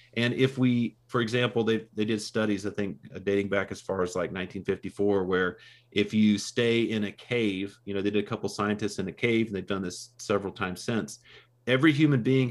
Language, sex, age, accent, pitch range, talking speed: English, male, 40-59, American, 100-115 Hz, 215 wpm